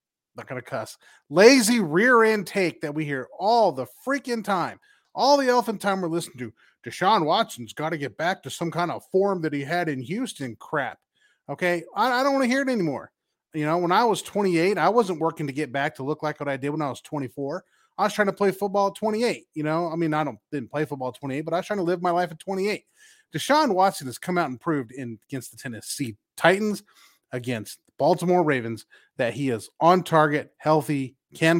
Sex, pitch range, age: male, 135-180 Hz, 30-49